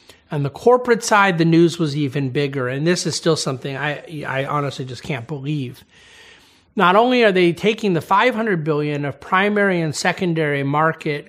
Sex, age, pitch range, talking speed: male, 40-59, 145-180 Hz, 175 wpm